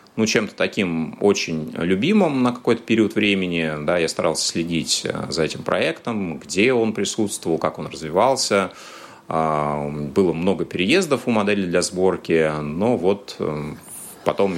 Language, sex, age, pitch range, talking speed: Russian, male, 30-49, 80-100 Hz, 130 wpm